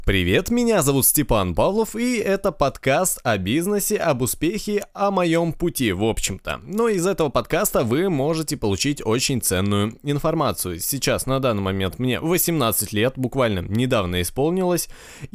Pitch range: 105-160 Hz